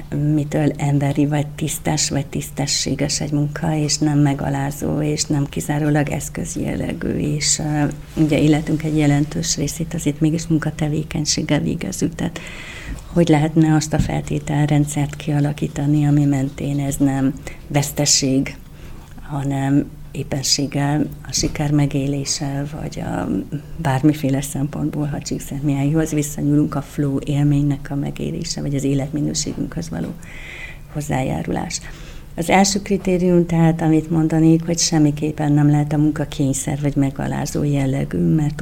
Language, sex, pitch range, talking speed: Hungarian, female, 140-155 Hz, 120 wpm